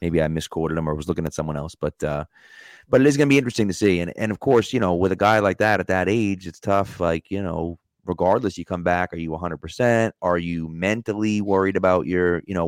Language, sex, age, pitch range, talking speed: English, male, 30-49, 85-100 Hz, 260 wpm